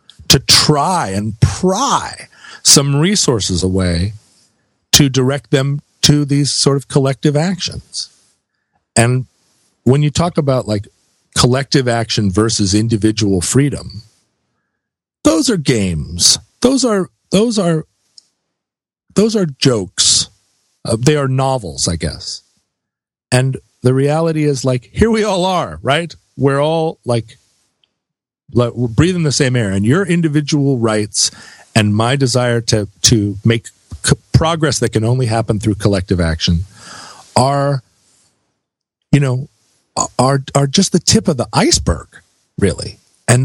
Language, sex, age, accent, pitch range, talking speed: English, male, 40-59, American, 110-150 Hz, 130 wpm